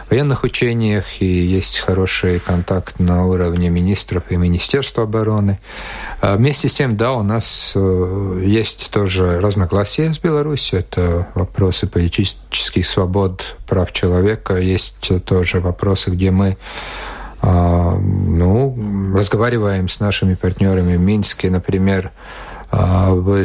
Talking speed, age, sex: 110 wpm, 40-59, male